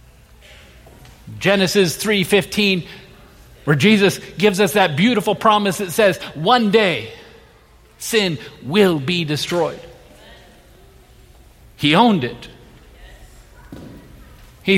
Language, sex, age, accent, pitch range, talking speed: English, male, 50-69, American, 120-195 Hz, 85 wpm